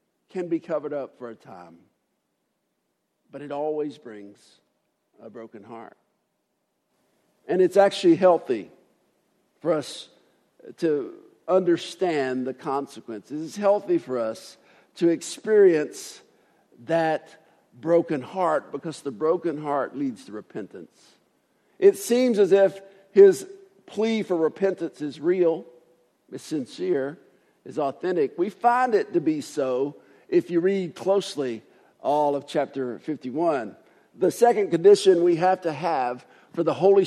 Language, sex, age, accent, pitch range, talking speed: English, male, 50-69, American, 155-225 Hz, 125 wpm